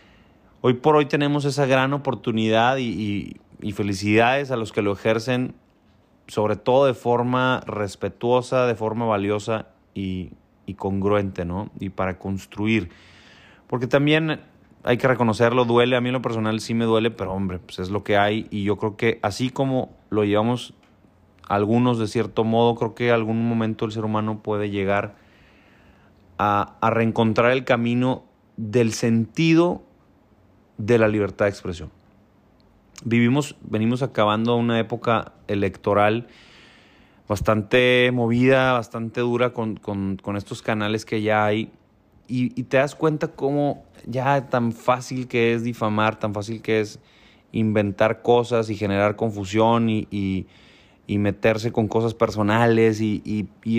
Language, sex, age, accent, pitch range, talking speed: Spanish, male, 30-49, Mexican, 105-120 Hz, 150 wpm